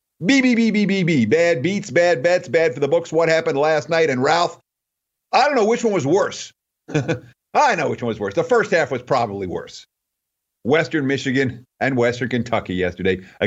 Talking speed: 205 wpm